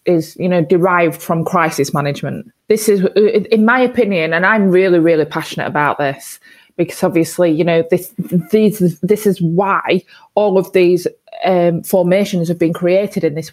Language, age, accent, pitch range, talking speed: English, 20-39, British, 180-220 Hz, 170 wpm